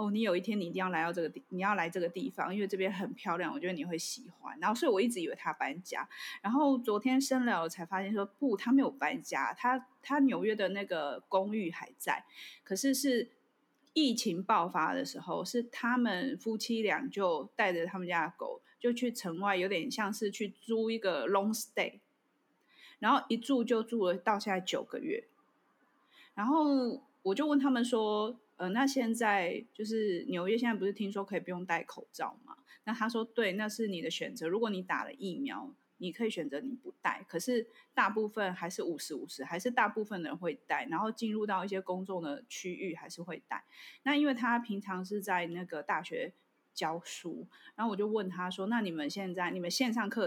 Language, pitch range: Chinese, 190-250 Hz